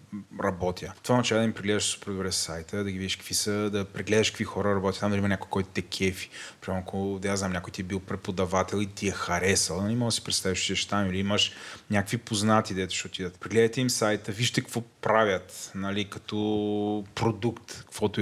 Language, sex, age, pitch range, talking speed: Bulgarian, male, 20-39, 100-120 Hz, 210 wpm